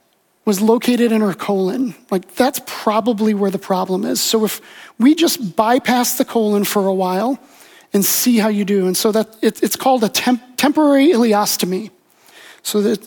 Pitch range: 205-255 Hz